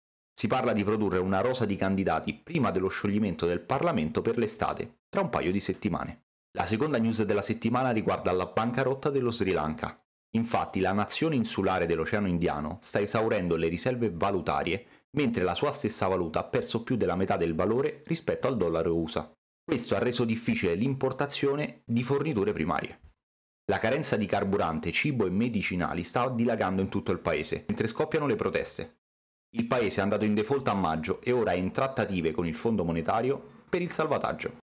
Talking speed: 180 wpm